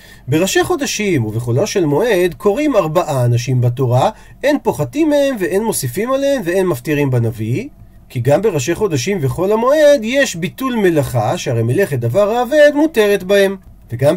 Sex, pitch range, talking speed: male, 135-225 Hz, 145 wpm